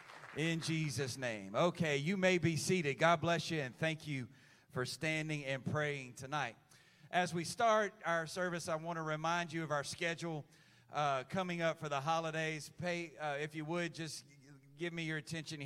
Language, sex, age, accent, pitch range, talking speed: English, male, 40-59, American, 140-170 Hz, 185 wpm